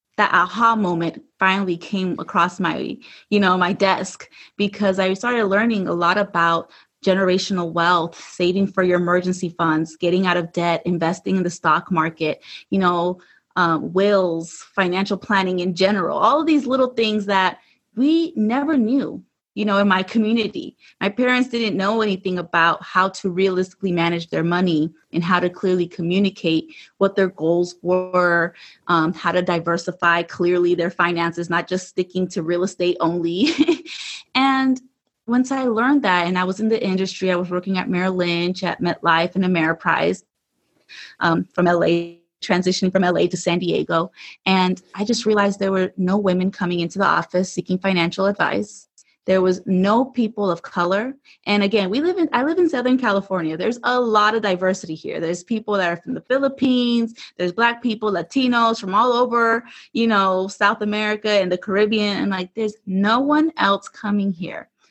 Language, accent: English, American